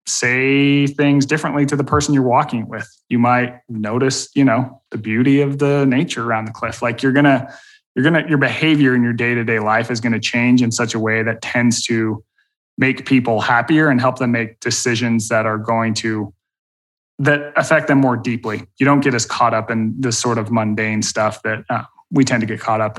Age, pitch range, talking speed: 20-39, 115-135 Hz, 215 wpm